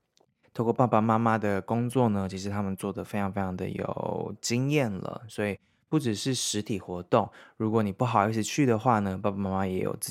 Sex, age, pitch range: male, 20-39, 95-115 Hz